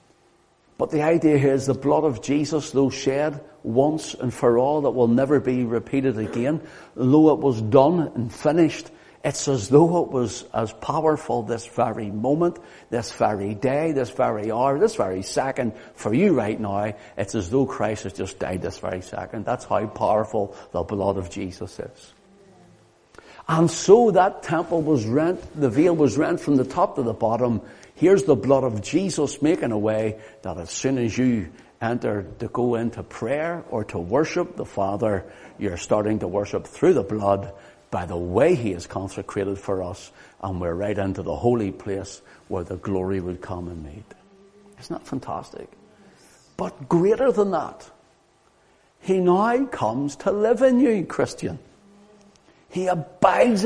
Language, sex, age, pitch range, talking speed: English, male, 60-79, 105-155 Hz, 170 wpm